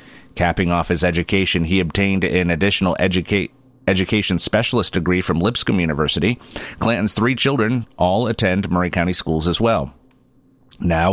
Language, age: English, 40-59